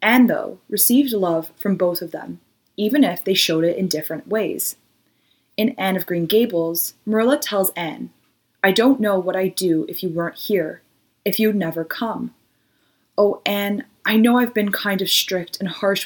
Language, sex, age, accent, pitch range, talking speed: English, female, 20-39, American, 175-220 Hz, 185 wpm